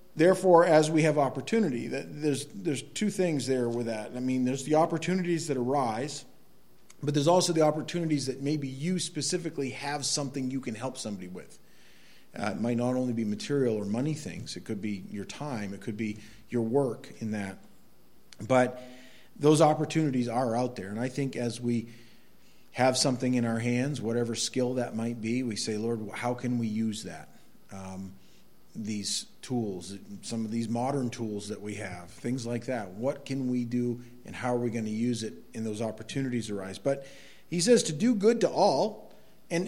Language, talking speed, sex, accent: English, 190 wpm, male, American